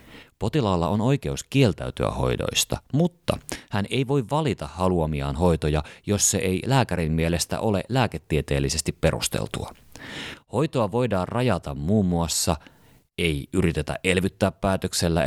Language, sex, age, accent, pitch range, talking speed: Finnish, male, 30-49, native, 80-115 Hz, 115 wpm